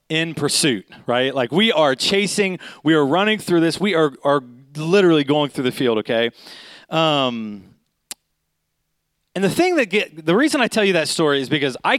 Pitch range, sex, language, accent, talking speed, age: 150-210 Hz, male, English, American, 185 wpm, 30-49